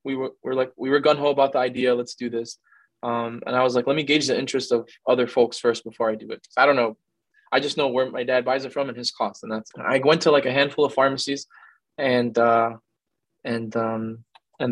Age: 20-39